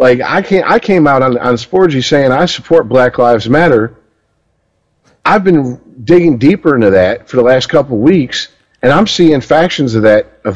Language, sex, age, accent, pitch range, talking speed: English, male, 50-69, American, 125-175 Hz, 195 wpm